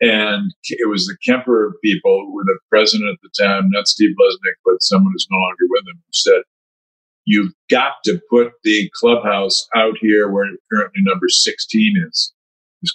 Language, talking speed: English, 180 wpm